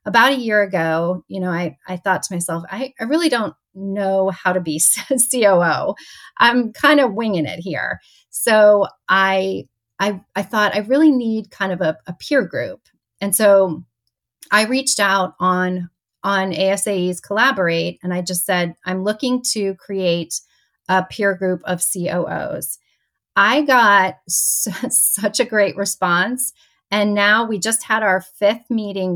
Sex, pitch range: female, 180-220 Hz